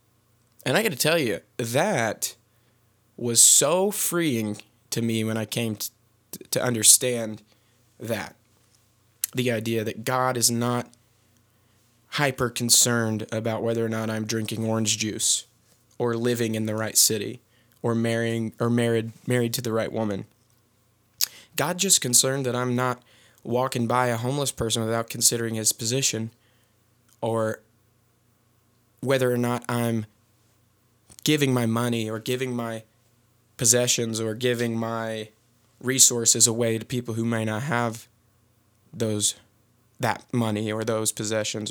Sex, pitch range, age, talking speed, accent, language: male, 115-125 Hz, 20-39, 135 wpm, American, English